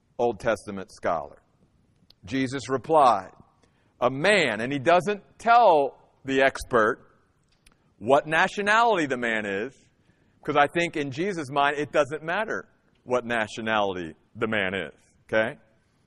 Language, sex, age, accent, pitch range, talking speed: English, male, 50-69, American, 125-180 Hz, 125 wpm